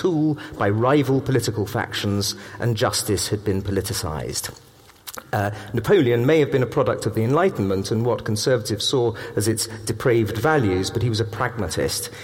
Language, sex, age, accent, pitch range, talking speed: English, male, 40-59, British, 105-135 Hz, 155 wpm